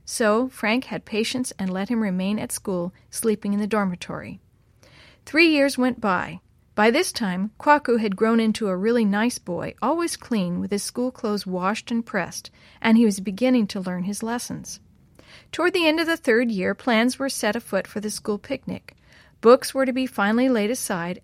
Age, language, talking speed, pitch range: 40-59, English, 190 wpm, 195-255 Hz